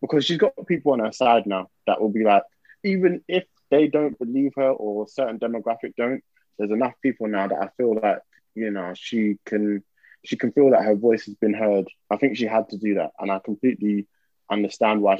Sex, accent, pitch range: male, British, 105-135 Hz